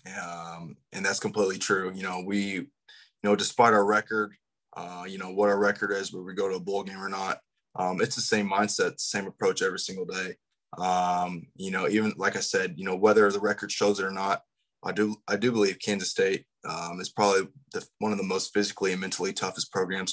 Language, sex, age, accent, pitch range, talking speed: English, male, 20-39, American, 95-150 Hz, 220 wpm